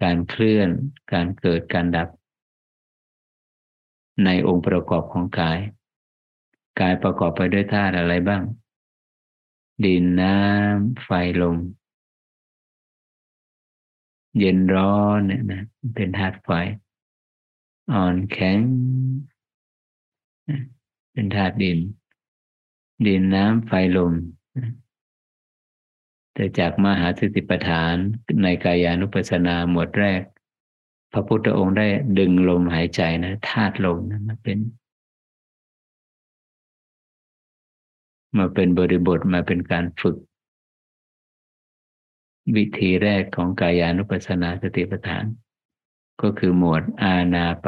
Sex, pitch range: male, 85-105 Hz